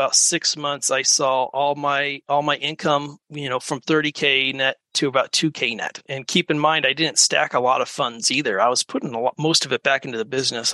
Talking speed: 235 wpm